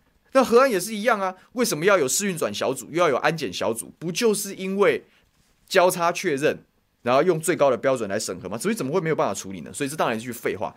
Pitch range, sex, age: 125-200 Hz, male, 20-39